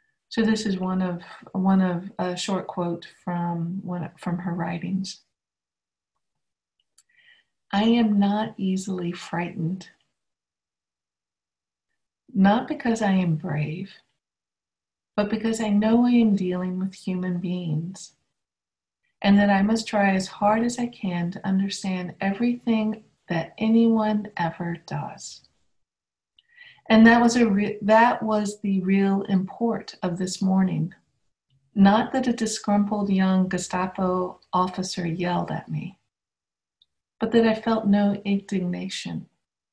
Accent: American